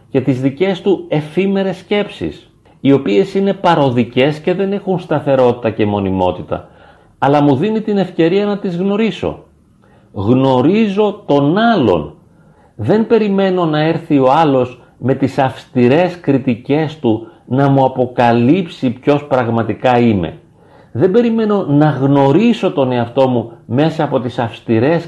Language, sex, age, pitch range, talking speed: Greek, male, 40-59, 125-185 Hz, 130 wpm